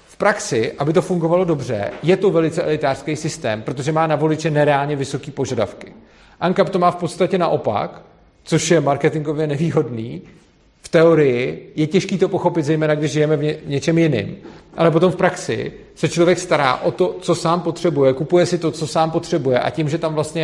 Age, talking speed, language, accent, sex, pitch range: 40-59, 185 wpm, Czech, native, male, 135-165 Hz